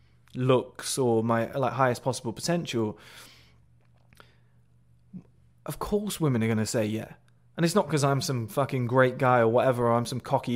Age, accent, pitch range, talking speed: 20-39, British, 110-155 Hz, 170 wpm